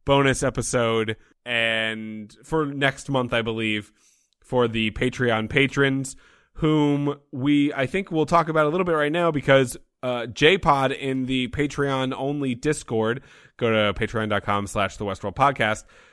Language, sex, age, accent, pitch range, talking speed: English, male, 20-39, American, 110-140 Hz, 130 wpm